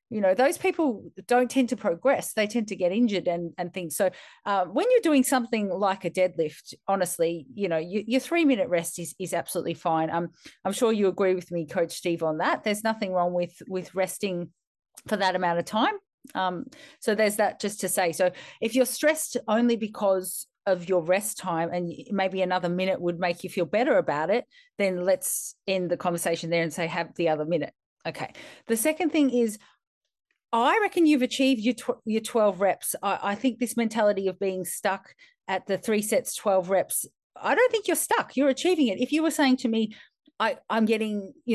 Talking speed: 210 wpm